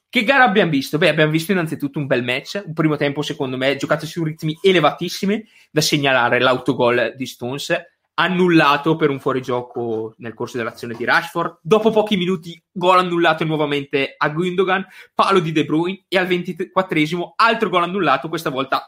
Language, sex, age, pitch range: Italian, male, 20-39, 130-175 Hz